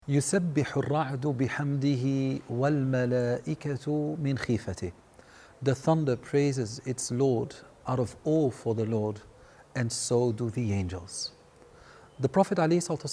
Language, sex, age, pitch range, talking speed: English, male, 40-59, 125-160 Hz, 85 wpm